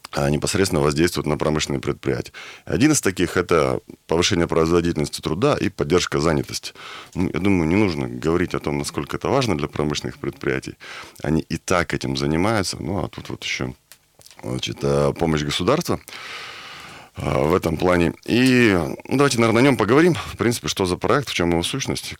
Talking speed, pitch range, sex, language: 160 wpm, 75-95 Hz, male, Russian